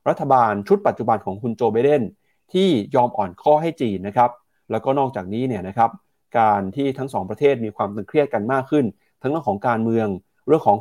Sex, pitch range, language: male, 105-135 Hz, Thai